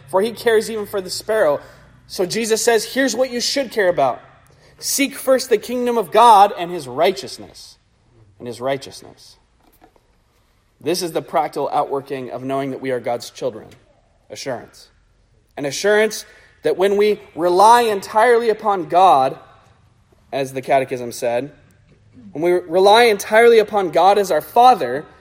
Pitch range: 115-195 Hz